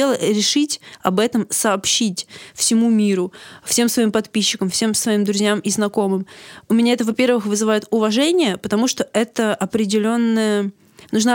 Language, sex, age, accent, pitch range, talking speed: Russian, female, 20-39, native, 200-245 Hz, 130 wpm